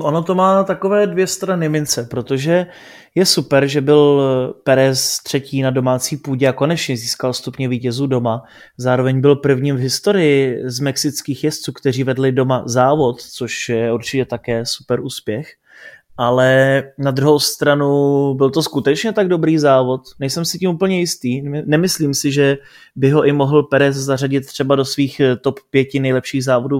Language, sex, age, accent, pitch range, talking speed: Czech, male, 20-39, native, 130-150 Hz, 165 wpm